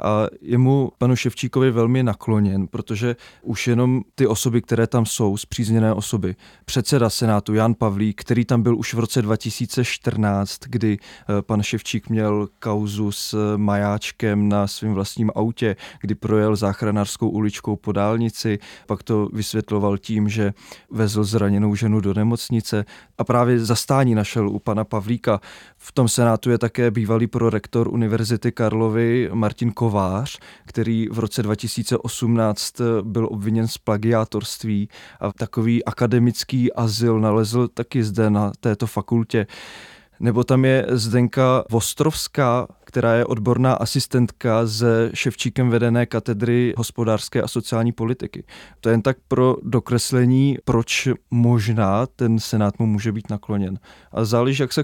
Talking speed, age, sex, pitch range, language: 140 wpm, 20-39, male, 105-120 Hz, Czech